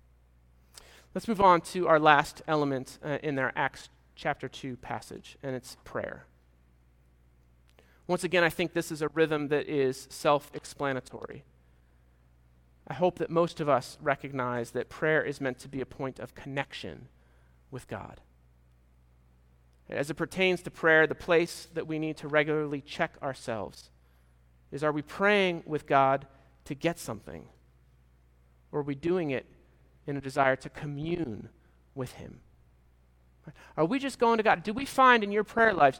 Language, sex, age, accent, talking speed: English, male, 40-59, American, 160 wpm